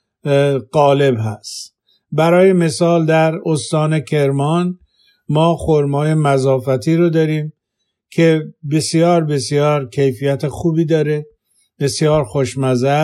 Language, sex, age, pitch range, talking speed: Persian, male, 50-69, 140-165 Hz, 90 wpm